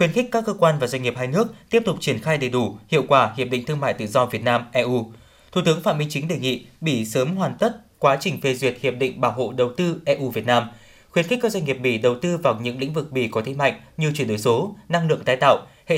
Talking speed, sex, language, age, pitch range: 285 wpm, male, Vietnamese, 20-39, 125-170 Hz